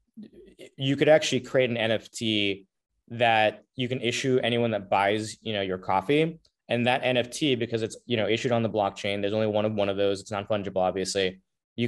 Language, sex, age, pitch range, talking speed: English, male, 20-39, 105-125 Hz, 200 wpm